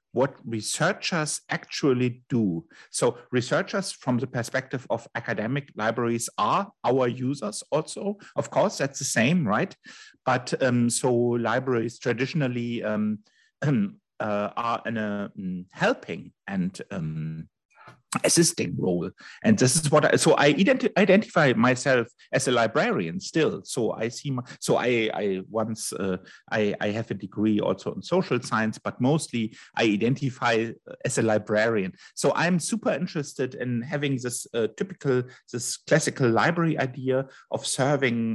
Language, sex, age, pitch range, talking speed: English, male, 50-69, 115-145 Hz, 140 wpm